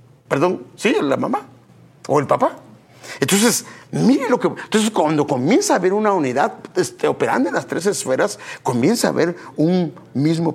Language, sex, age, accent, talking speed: English, male, 50-69, Mexican, 165 wpm